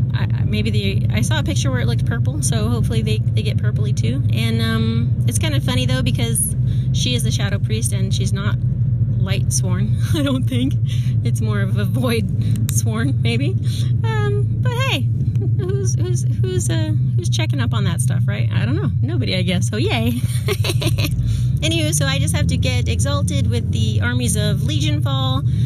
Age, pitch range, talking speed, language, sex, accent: 30-49, 115-125 Hz, 190 wpm, English, female, American